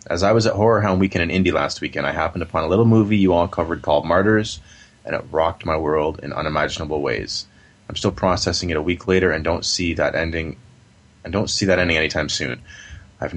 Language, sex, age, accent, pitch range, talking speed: English, male, 30-49, American, 80-100 Hz, 225 wpm